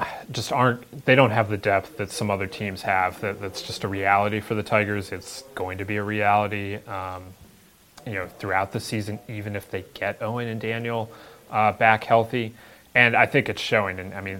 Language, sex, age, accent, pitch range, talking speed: English, male, 20-39, American, 95-110 Hz, 210 wpm